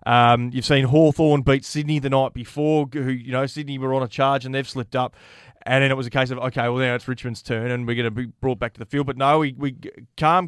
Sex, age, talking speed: male, 20-39, 280 wpm